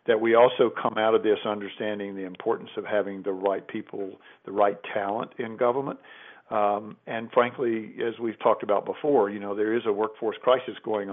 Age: 50-69